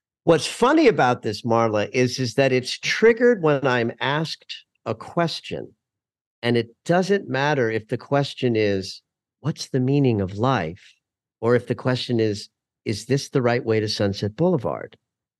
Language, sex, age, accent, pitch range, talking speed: English, male, 50-69, American, 115-155 Hz, 160 wpm